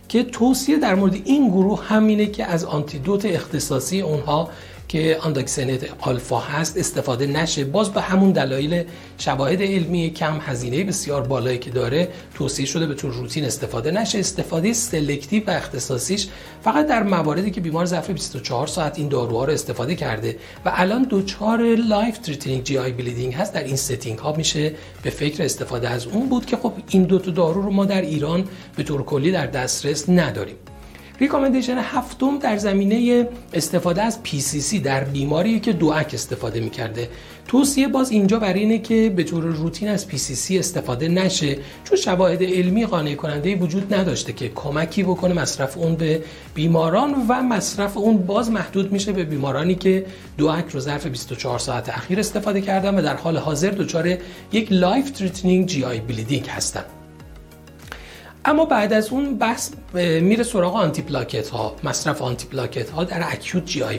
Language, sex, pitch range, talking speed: Persian, male, 140-200 Hz, 165 wpm